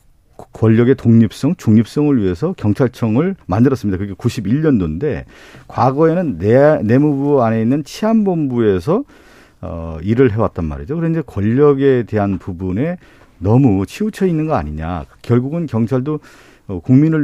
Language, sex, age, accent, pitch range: Korean, male, 50-69, native, 105-150 Hz